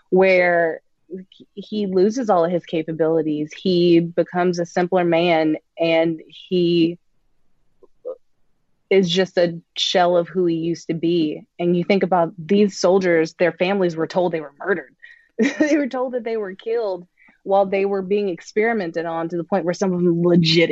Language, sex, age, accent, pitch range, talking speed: English, female, 20-39, American, 165-190 Hz, 170 wpm